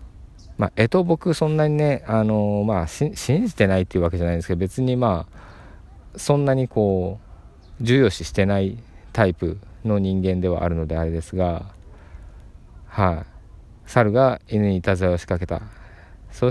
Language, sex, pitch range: Japanese, male, 85-115 Hz